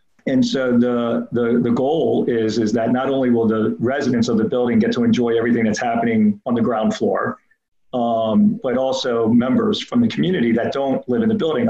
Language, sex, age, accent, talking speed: English, male, 40-59, American, 205 wpm